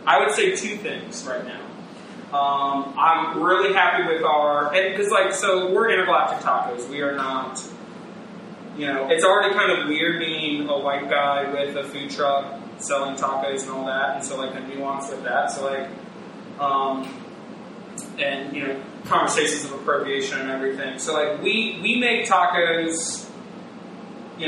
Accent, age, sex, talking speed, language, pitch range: American, 20-39, male, 165 wpm, English, 140-170 Hz